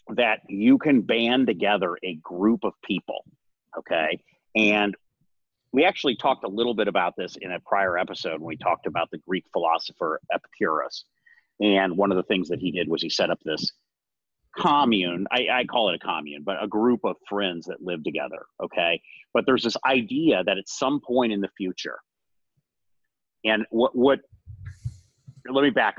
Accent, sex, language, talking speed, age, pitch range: American, male, English, 180 wpm, 40-59, 100-125 Hz